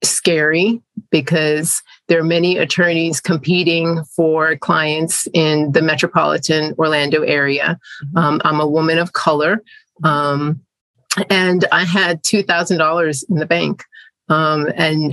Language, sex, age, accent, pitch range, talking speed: English, female, 30-49, American, 150-170 Hz, 125 wpm